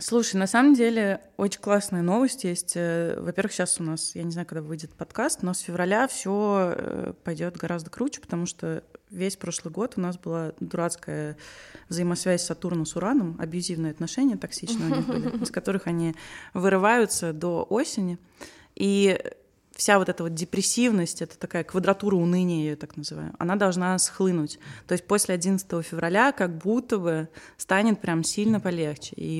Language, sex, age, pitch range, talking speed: Russian, female, 20-39, 165-200 Hz, 155 wpm